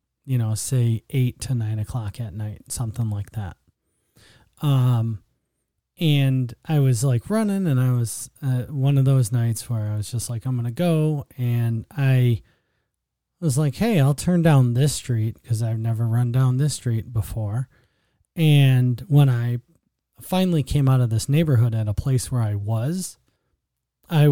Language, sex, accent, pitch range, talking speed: English, male, American, 115-140 Hz, 170 wpm